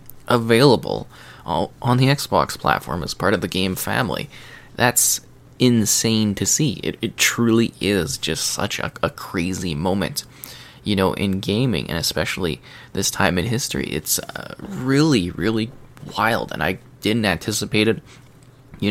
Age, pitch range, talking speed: 20-39, 95-125 Hz, 150 wpm